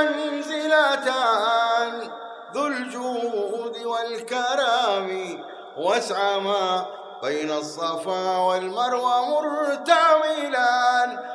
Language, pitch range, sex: Arabic, 190-275 Hz, male